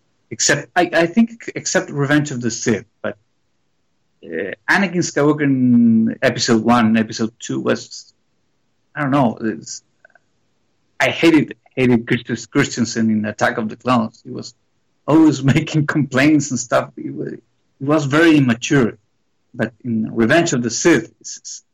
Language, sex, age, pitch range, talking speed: English, male, 50-69, 115-135 Hz, 140 wpm